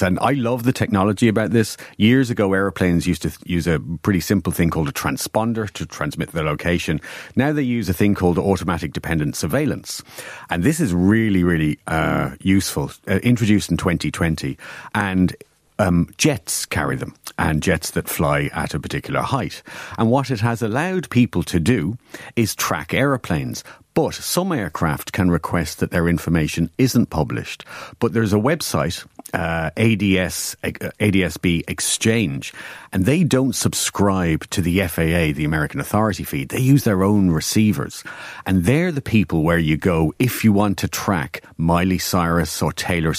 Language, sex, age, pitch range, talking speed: English, male, 40-59, 85-115 Hz, 165 wpm